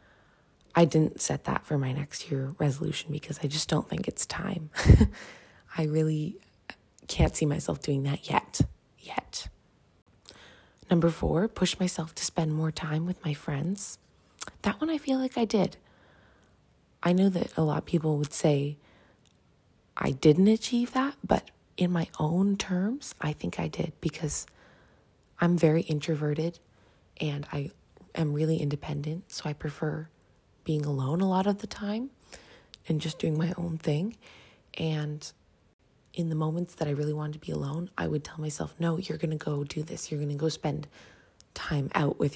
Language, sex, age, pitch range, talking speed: English, female, 20-39, 145-175 Hz, 170 wpm